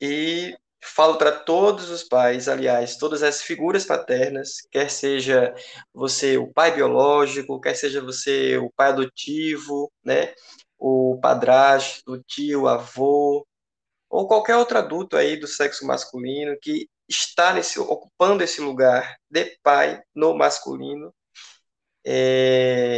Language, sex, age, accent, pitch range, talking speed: Portuguese, male, 20-39, Brazilian, 130-155 Hz, 125 wpm